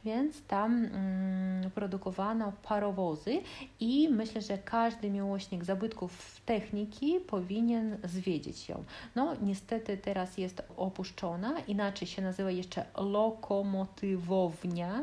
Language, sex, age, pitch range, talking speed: Polish, female, 30-49, 185-215 Hz, 95 wpm